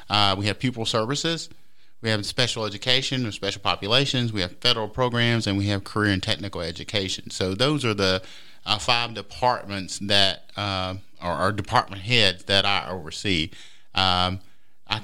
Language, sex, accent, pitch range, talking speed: English, male, American, 95-120 Hz, 160 wpm